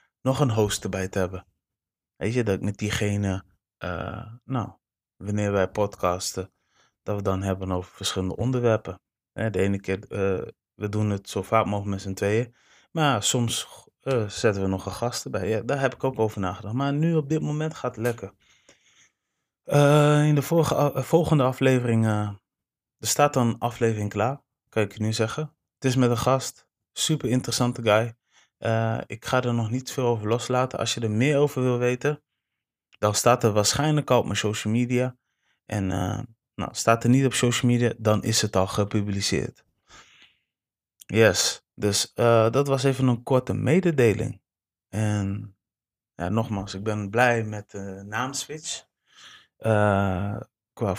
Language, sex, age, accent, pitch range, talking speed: Dutch, male, 20-39, Dutch, 100-125 Hz, 170 wpm